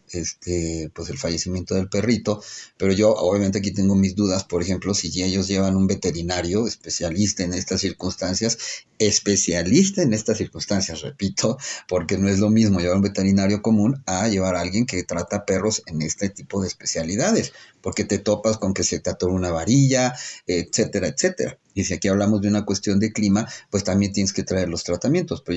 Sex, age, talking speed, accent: male, 40-59, 185 wpm, Mexican